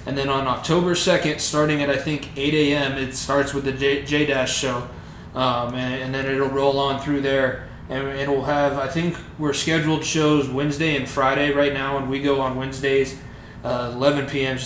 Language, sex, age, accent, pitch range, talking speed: English, male, 20-39, American, 135-145 Hz, 190 wpm